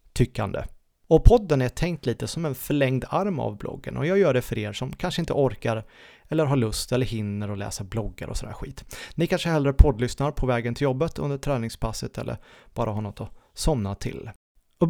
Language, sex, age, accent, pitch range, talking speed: Swedish, male, 30-49, native, 110-145 Hz, 205 wpm